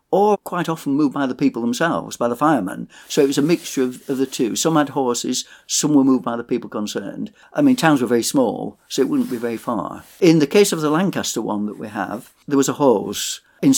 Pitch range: 115-145 Hz